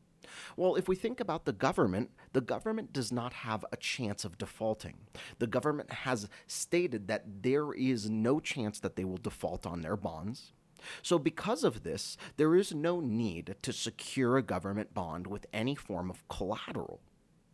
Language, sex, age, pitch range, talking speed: English, male, 30-49, 95-135 Hz, 170 wpm